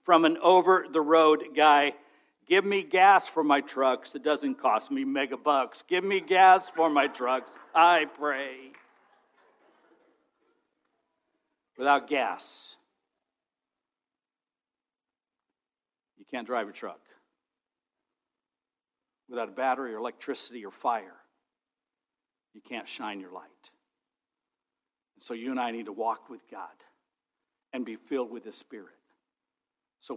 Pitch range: 150-245 Hz